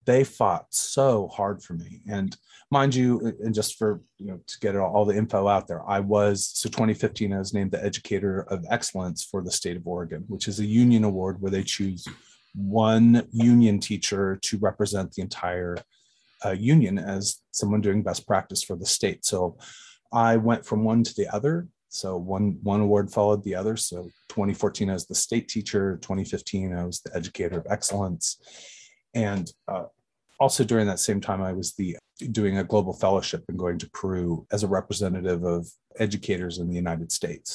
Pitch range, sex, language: 95-120 Hz, male, English